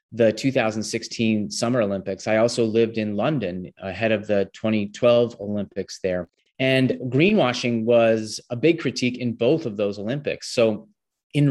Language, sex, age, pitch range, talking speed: English, male, 30-49, 105-125 Hz, 145 wpm